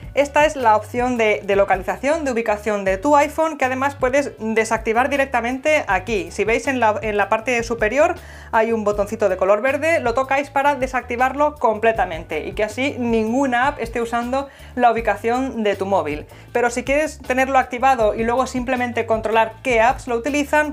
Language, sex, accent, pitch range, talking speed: Spanish, female, Spanish, 215-280 Hz, 175 wpm